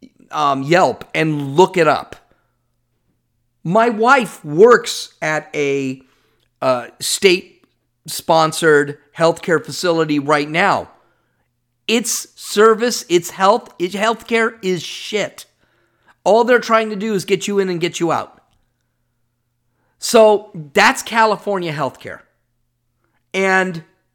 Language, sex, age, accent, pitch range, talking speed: English, male, 40-59, American, 130-210 Hz, 105 wpm